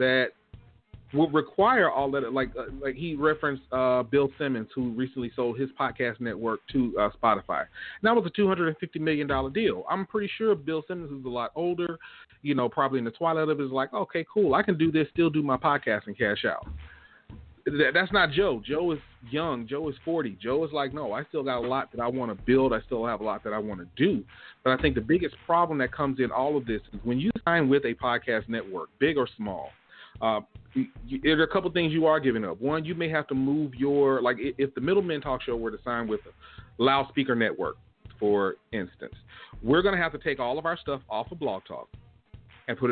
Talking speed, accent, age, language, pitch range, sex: 230 wpm, American, 40-59, English, 120-155 Hz, male